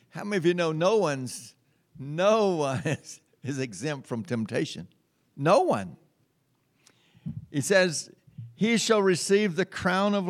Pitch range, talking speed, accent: 130-165 Hz, 140 wpm, American